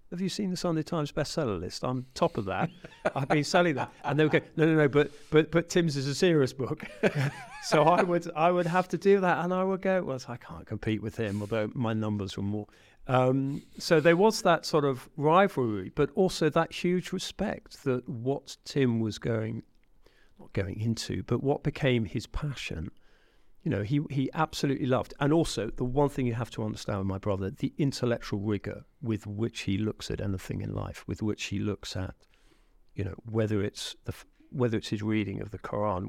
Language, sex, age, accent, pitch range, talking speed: English, male, 50-69, British, 105-155 Hz, 210 wpm